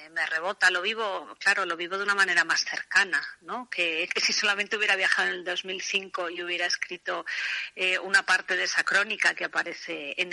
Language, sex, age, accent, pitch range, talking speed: Spanish, female, 40-59, Spanish, 170-195 Hz, 200 wpm